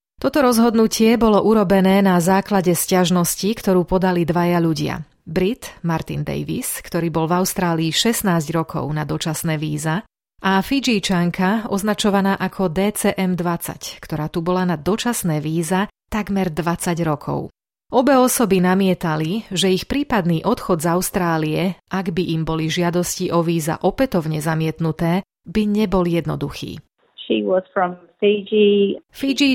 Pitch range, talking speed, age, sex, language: 165-200 Hz, 120 wpm, 30-49, female, Slovak